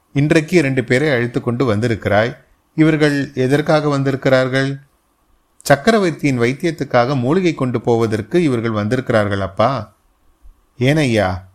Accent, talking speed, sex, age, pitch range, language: native, 95 wpm, male, 30-49, 105-140 Hz, Tamil